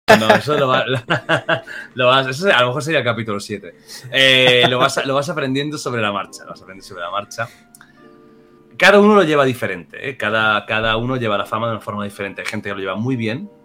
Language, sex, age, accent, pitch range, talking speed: Spanish, male, 30-49, Spanish, 110-150 Hz, 220 wpm